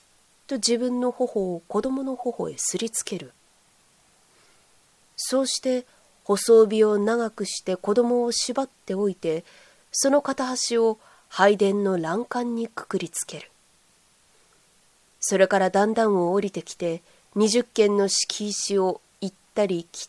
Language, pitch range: Japanese, 185-230 Hz